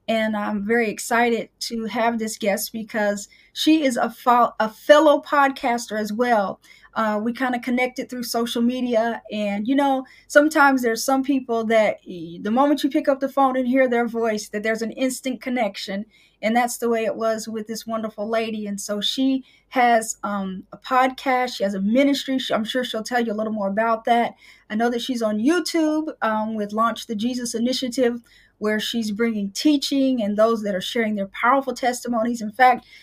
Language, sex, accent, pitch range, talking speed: English, female, American, 220-260 Hz, 195 wpm